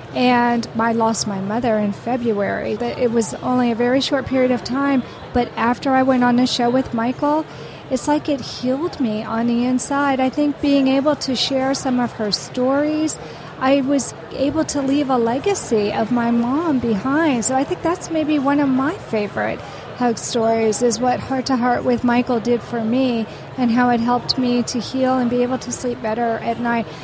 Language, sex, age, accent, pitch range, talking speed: English, female, 40-59, American, 235-270 Hz, 200 wpm